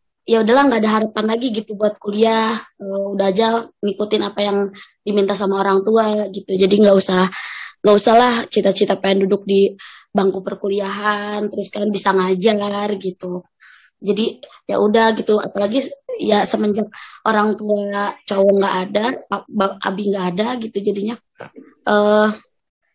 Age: 20-39